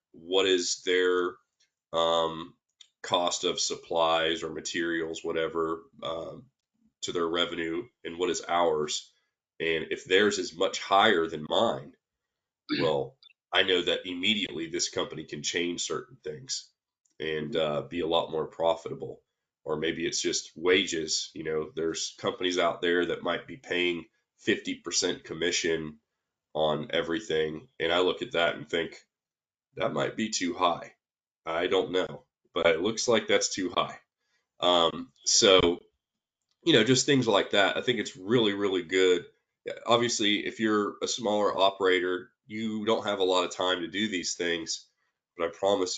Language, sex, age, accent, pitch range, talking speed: English, male, 20-39, American, 85-105 Hz, 155 wpm